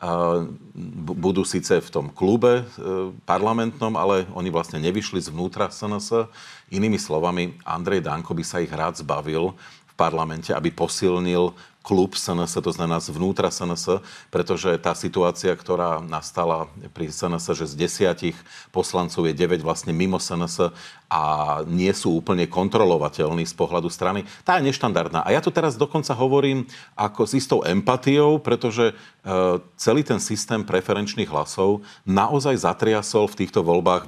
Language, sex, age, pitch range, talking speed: Slovak, male, 40-59, 85-105 Hz, 140 wpm